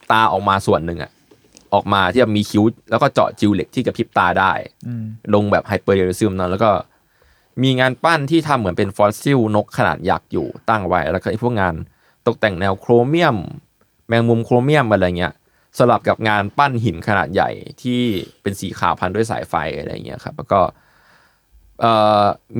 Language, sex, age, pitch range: Thai, male, 20-39, 95-120 Hz